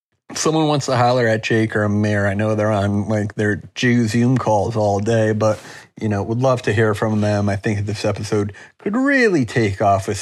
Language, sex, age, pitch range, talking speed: English, male, 30-49, 105-120 Hz, 225 wpm